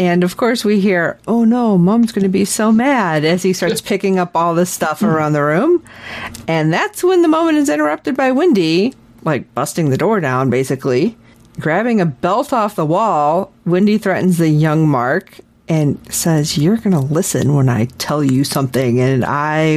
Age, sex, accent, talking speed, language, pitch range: 40-59, female, American, 190 wpm, English, 150-235 Hz